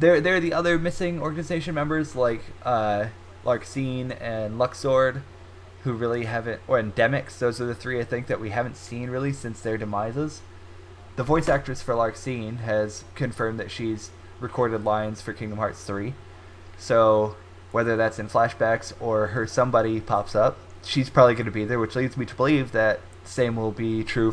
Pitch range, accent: 105-130 Hz, American